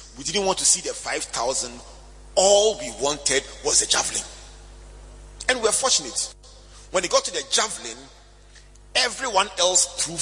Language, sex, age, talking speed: English, male, 40-59, 160 wpm